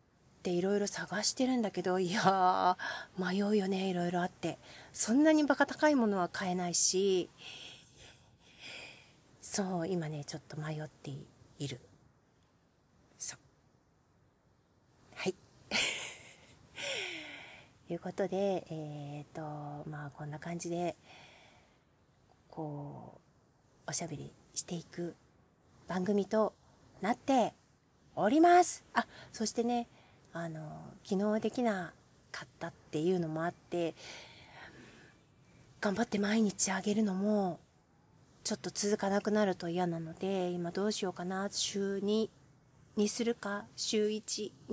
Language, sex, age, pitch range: Japanese, female, 40-59, 155-210 Hz